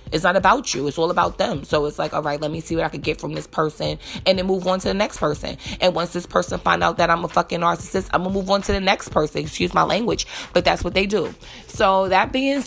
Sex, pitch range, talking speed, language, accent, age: female, 160-185 Hz, 295 wpm, English, American, 20-39